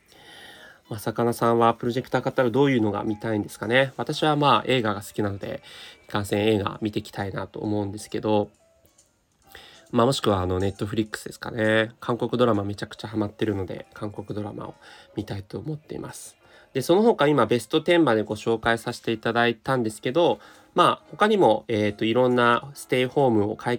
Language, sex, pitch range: Japanese, male, 105-135 Hz